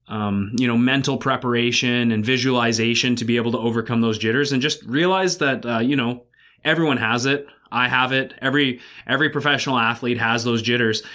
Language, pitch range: English, 115-135 Hz